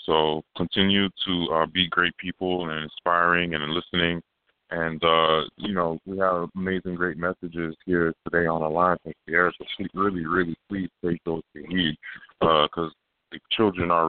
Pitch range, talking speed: 80-90 Hz, 175 wpm